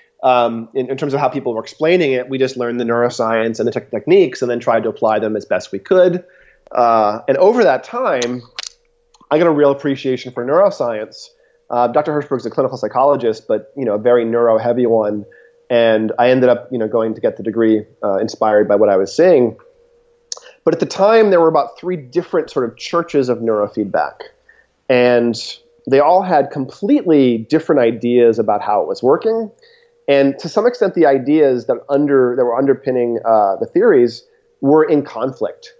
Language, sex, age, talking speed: English, male, 30-49, 195 wpm